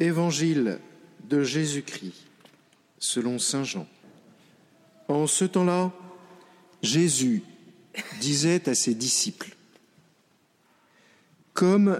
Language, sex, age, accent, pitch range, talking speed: French, male, 50-69, French, 150-200 Hz, 75 wpm